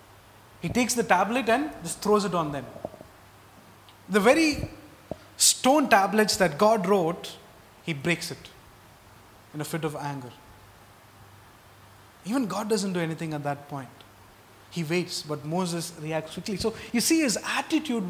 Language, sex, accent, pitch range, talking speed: English, male, Indian, 130-185 Hz, 145 wpm